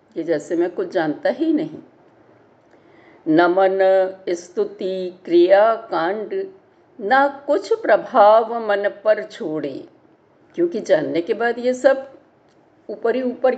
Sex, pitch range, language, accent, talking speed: female, 210-340 Hz, Hindi, native, 115 wpm